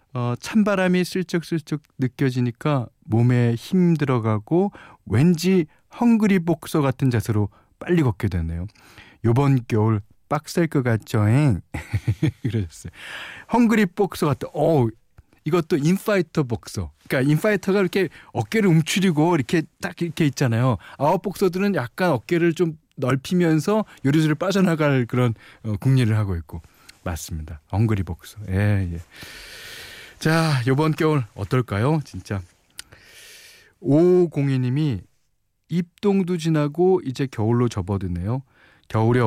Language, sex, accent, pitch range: Korean, male, native, 105-160 Hz